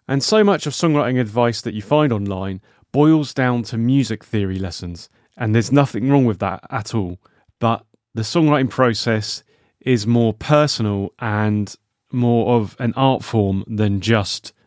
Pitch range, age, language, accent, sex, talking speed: 105-135 Hz, 30-49, English, British, male, 160 wpm